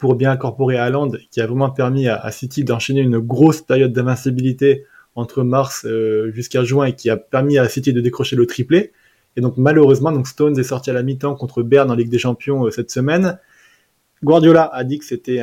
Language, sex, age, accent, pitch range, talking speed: French, male, 20-39, French, 120-140 Hz, 220 wpm